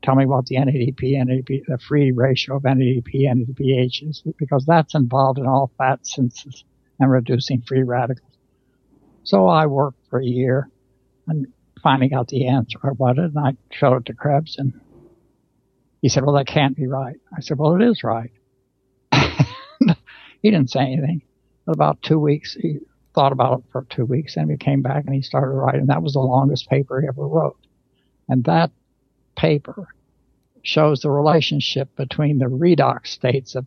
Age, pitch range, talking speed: 60-79, 130-150 Hz, 180 wpm